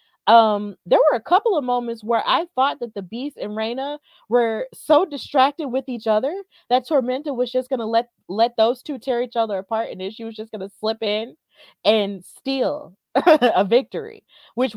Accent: American